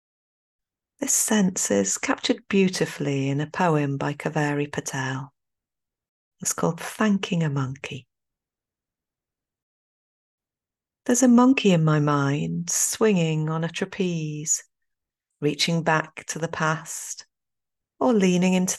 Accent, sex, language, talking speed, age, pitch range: British, female, English, 110 wpm, 40-59, 150-205 Hz